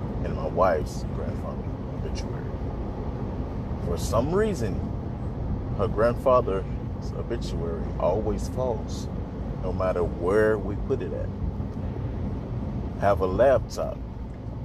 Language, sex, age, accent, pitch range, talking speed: English, male, 30-49, American, 90-105 Hz, 95 wpm